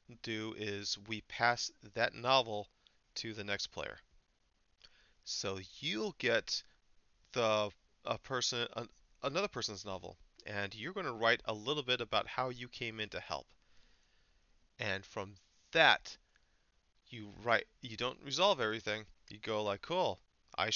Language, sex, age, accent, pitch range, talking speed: English, male, 30-49, American, 100-120 Hz, 140 wpm